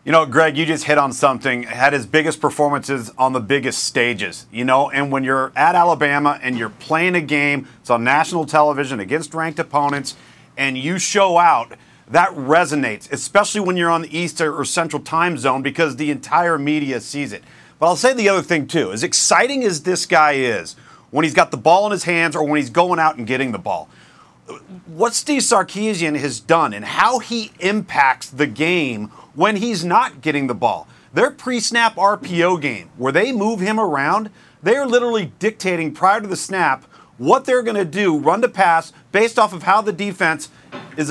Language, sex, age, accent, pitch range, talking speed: English, male, 40-59, American, 145-190 Hz, 200 wpm